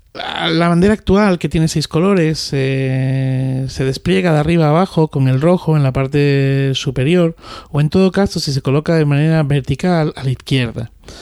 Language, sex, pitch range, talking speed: Spanish, male, 130-155 Hz, 175 wpm